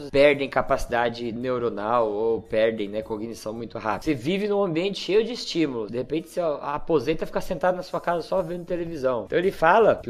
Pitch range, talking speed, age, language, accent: 135-175 Hz, 190 wpm, 20-39, Portuguese, Brazilian